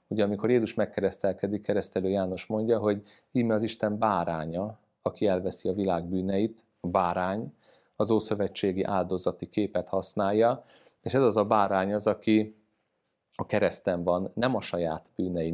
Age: 30-49